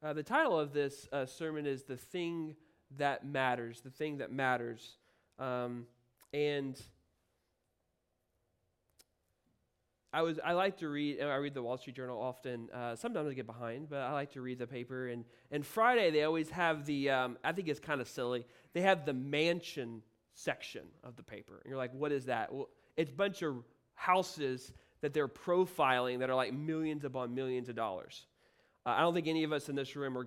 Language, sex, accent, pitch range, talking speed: English, male, American, 125-165 Hz, 200 wpm